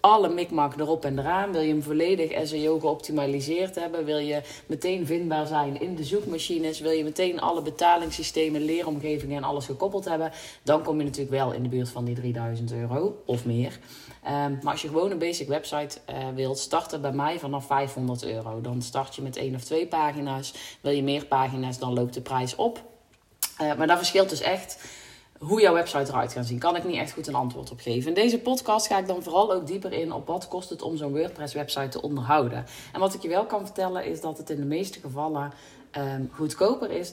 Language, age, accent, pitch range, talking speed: Dutch, 30-49, Dutch, 135-170 Hz, 210 wpm